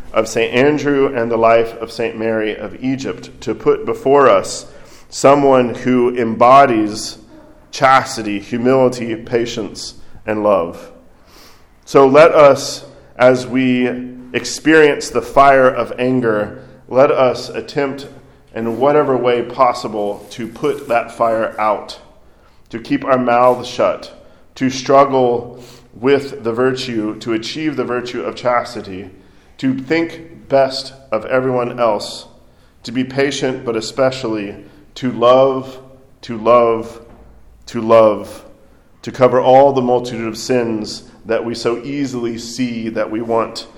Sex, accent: male, American